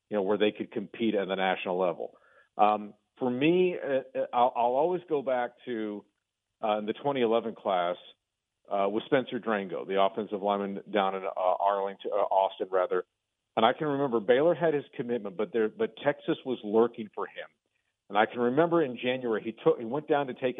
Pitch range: 105-130 Hz